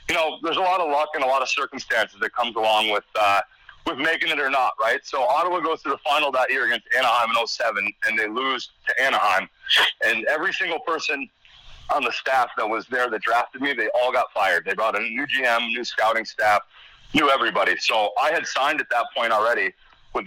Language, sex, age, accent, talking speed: English, male, 40-59, American, 230 wpm